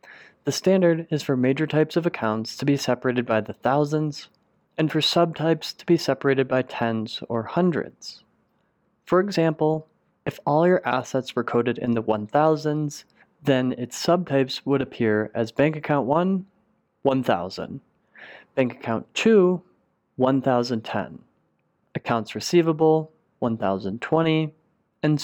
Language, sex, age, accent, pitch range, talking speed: English, male, 30-49, American, 120-160 Hz, 125 wpm